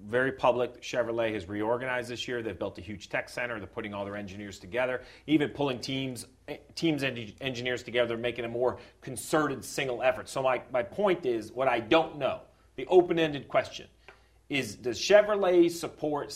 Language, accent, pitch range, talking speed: English, American, 125-190 Hz, 175 wpm